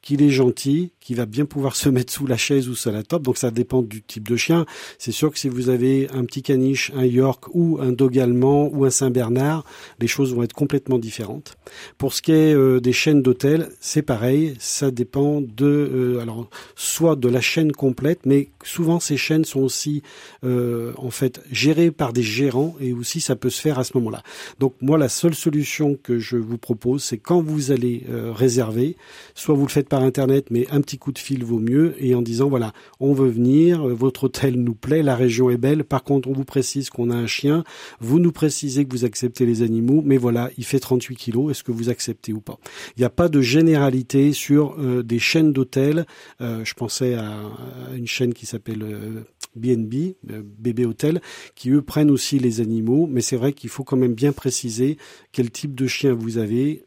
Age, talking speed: 40-59, 220 wpm